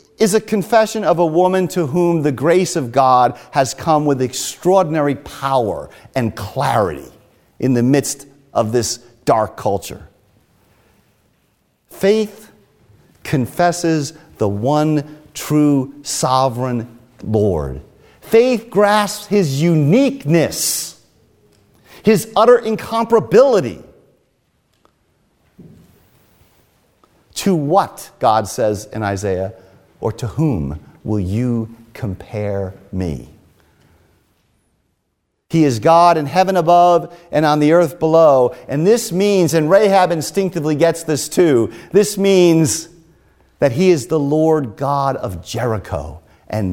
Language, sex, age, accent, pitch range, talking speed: English, male, 50-69, American, 110-170 Hz, 110 wpm